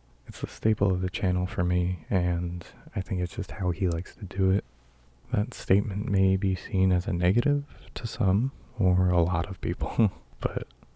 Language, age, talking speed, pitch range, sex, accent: English, 20-39, 190 wpm, 85-95 Hz, male, American